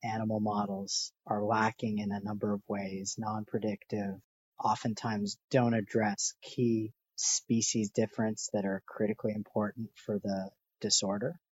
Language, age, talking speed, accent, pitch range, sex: English, 40-59, 125 wpm, American, 100-115 Hz, male